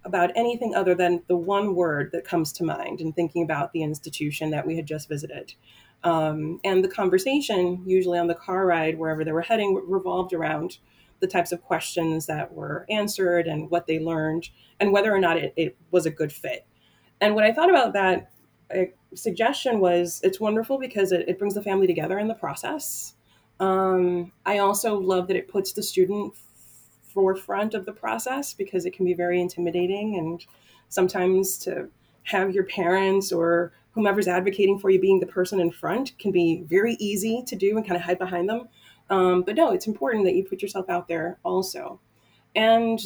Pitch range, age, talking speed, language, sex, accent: 165-195 Hz, 30-49, 190 wpm, English, female, American